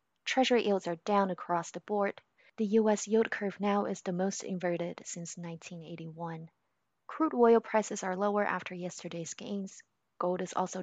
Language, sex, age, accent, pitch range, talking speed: English, female, 20-39, American, 175-205 Hz, 160 wpm